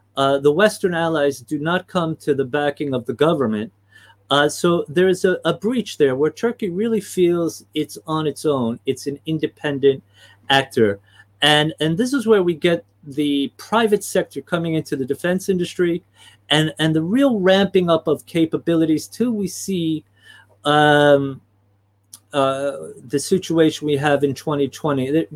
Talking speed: 160 wpm